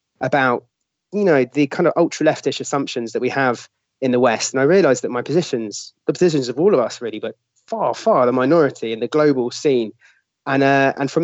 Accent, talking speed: British, 220 wpm